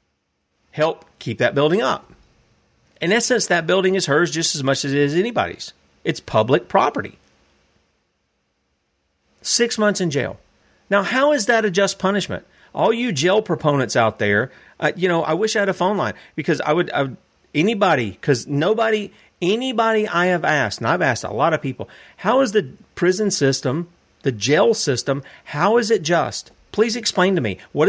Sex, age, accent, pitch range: male, 40-59, American, 130-190 Hz